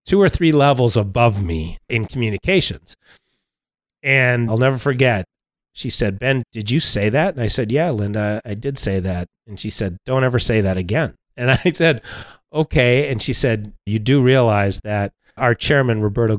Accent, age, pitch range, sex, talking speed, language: American, 40-59, 105-140 Hz, male, 185 wpm, English